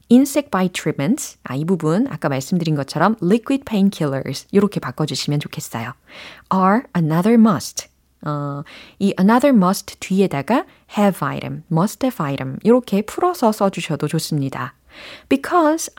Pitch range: 155-230 Hz